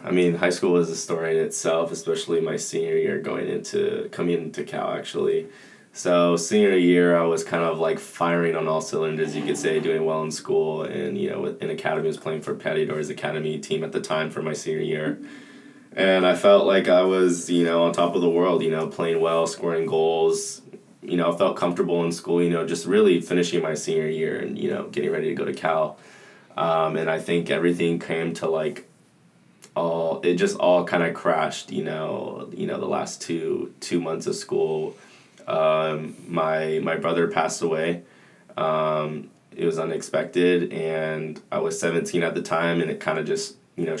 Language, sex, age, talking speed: English, male, 20-39, 205 wpm